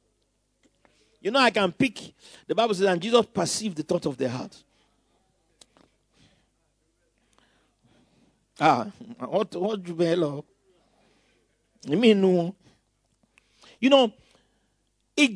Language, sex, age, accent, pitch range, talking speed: English, male, 50-69, Nigerian, 185-270 Hz, 90 wpm